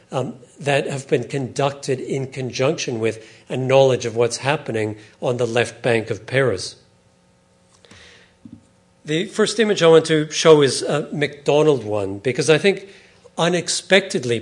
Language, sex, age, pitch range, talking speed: English, male, 50-69, 120-145 Hz, 140 wpm